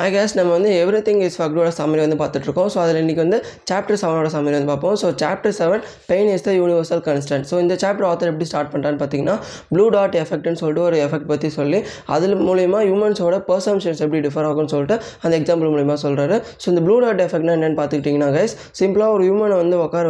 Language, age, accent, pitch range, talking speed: Tamil, 20-39, native, 155-190 Hz, 210 wpm